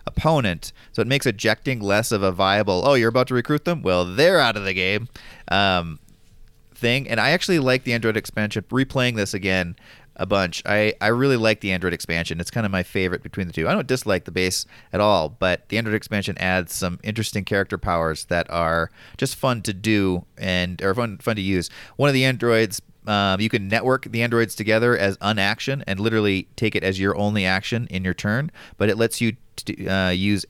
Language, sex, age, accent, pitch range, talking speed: English, male, 30-49, American, 95-115 Hz, 215 wpm